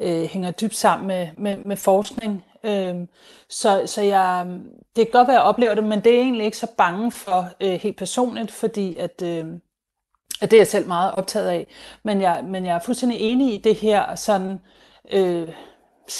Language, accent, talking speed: Danish, native, 185 wpm